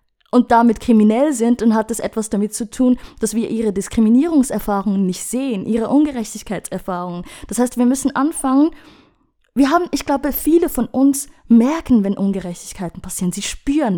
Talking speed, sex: 160 wpm, female